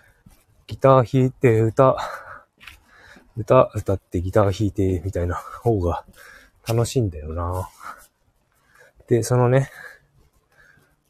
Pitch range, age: 90-120 Hz, 20-39